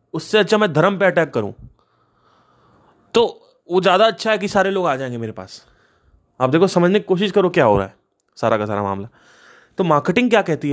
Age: 20-39